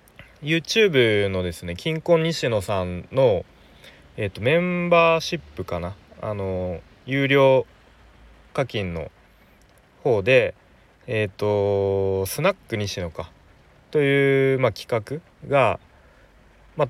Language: Japanese